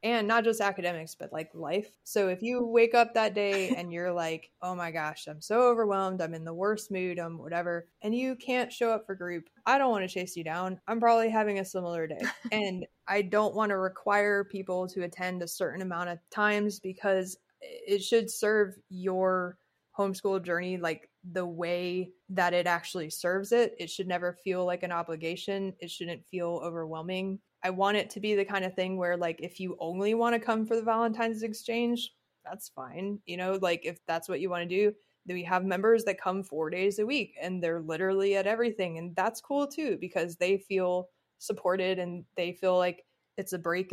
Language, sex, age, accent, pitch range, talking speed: English, female, 20-39, American, 175-210 Hz, 205 wpm